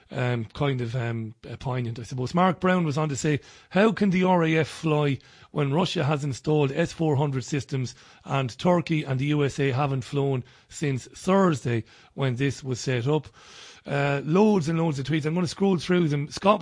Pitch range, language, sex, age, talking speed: 135-165 Hz, English, male, 30-49, 185 wpm